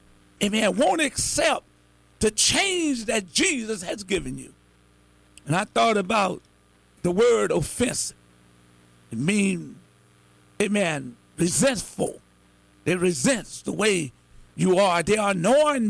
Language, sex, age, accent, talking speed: English, male, 50-69, American, 115 wpm